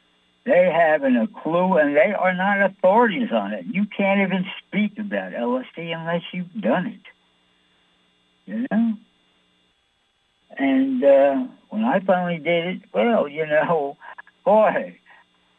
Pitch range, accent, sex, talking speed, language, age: 155-240 Hz, American, male, 130 wpm, English, 60-79